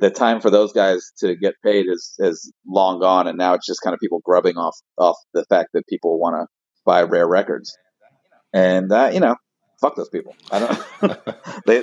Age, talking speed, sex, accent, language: 40-59, 215 wpm, male, American, English